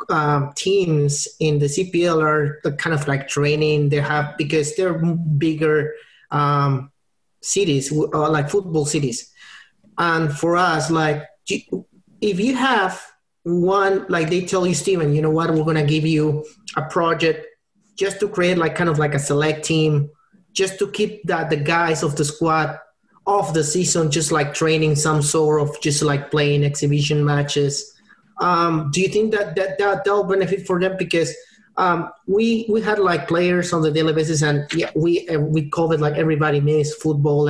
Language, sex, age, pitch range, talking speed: English, male, 30-49, 150-175 Hz, 175 wpm